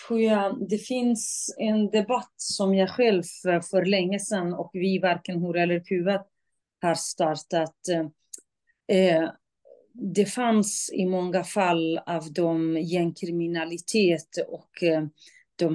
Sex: female